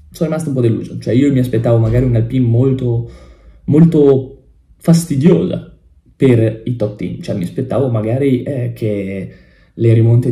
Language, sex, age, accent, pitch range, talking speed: Italian, male, 20-39, native, 105-130 Hz, 150 wpm